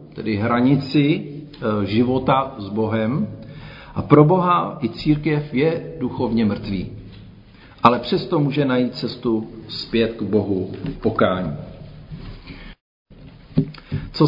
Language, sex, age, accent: Czech, male, 50-69, native